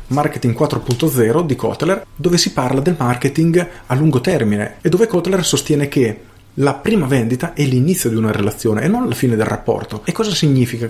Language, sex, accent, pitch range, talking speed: Italian, male, native, 110-145 Hz, 185 wpm